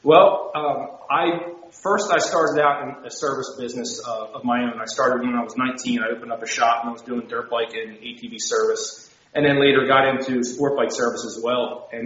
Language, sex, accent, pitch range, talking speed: English, male, American, 120-145 Hz, 230 wpm